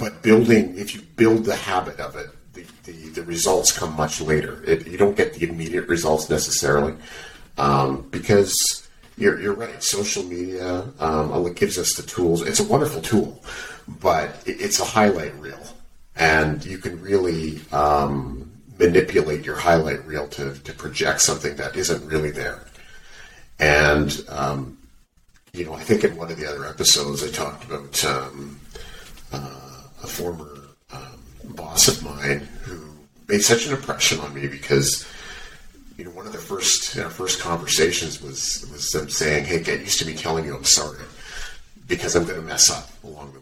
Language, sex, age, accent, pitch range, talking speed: English, male, 40-59, American, 75-90 Hz, 175 wpm